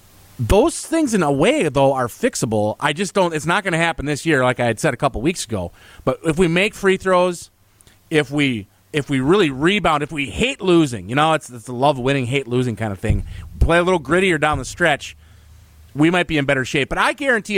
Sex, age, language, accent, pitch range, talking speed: male, 30-49, English, American, 130-190 Hz, 240 wpm